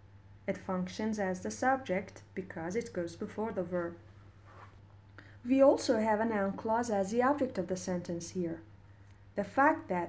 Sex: female